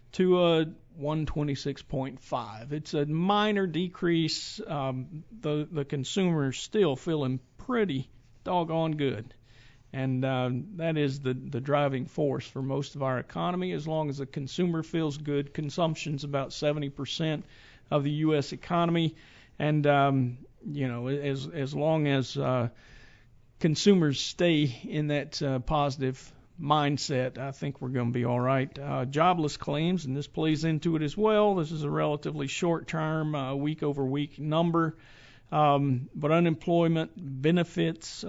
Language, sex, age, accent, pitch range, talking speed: English, male, 50-69, American, 135-165 Hz, 145 wpm